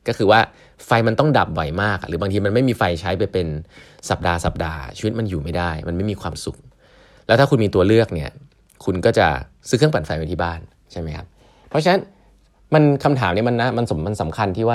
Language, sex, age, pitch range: Thai, male, 20-39, 90-125 Hz